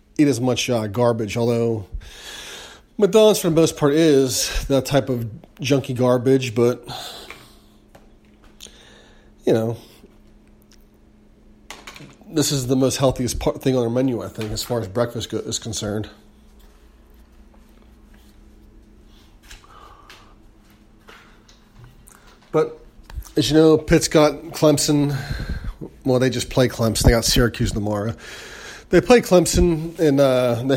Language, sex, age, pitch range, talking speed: English, male, 30-49, 115-145 Hz, 120 wpm